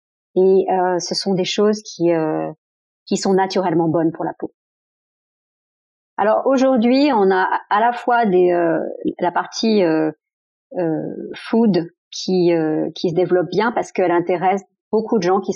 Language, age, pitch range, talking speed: French, 40-59, 170-200 Hz, 160 wpm